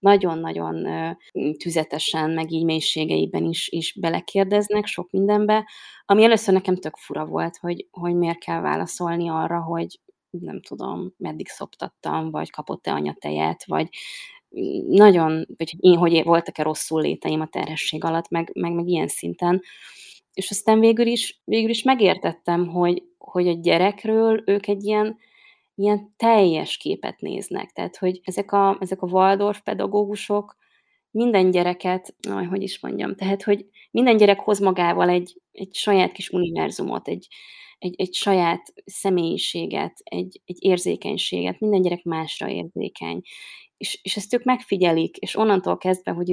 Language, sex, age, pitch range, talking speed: Hungarian, female, 20-39, 170-205 Hz, 140 wpm